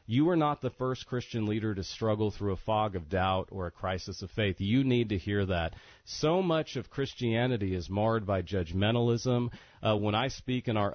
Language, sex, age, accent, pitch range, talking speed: English, male, 40-59, American, 100-125 Hz, 210 wpm